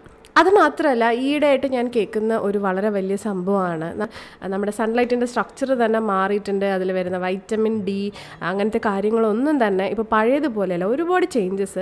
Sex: female